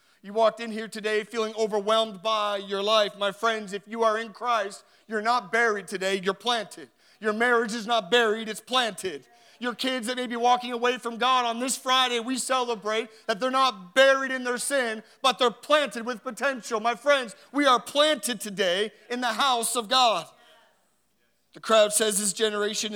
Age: 40-59